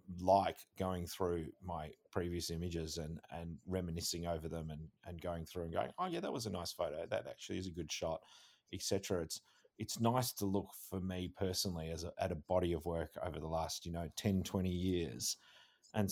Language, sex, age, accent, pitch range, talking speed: English, male, 30-49, Australian, 80-95 Hz, 205 wpm